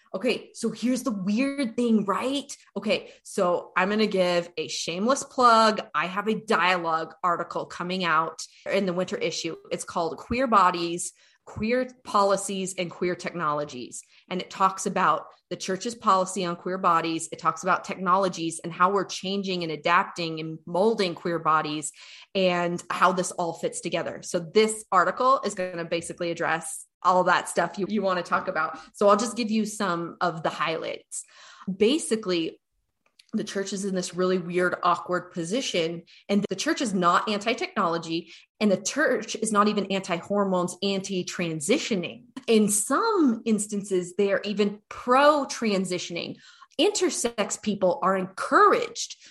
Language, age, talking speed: English, 20-39, 155 wpm